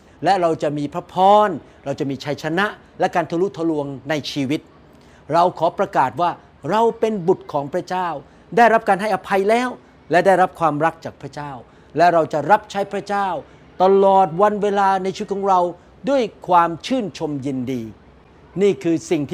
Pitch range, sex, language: 160-205 Hz, male, Thai